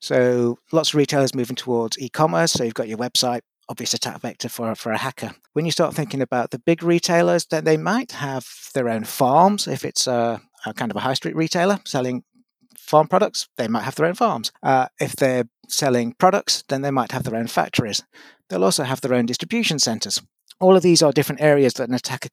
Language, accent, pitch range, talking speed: English, British, 120-150 Hz, 220 wpm